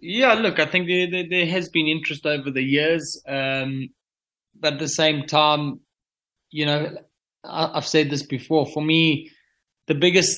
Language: English